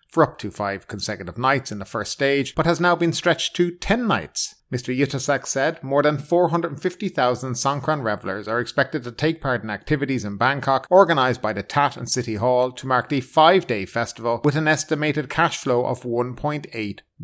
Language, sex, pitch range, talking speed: English, male, 115-160 Hz, 190 wpm